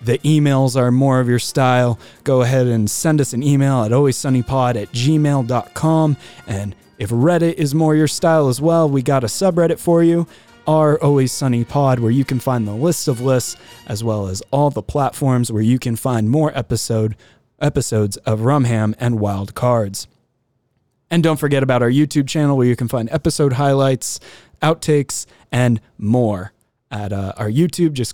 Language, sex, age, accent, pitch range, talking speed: English, male, 20-39, American, 115-150 Hz, 175 wpm